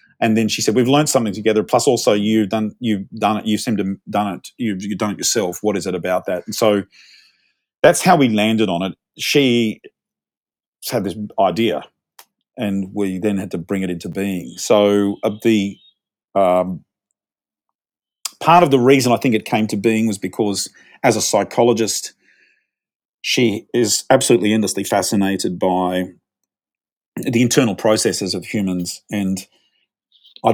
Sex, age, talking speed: male, 40-59, 160 wpm